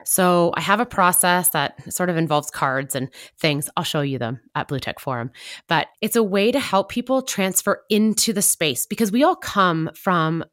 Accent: American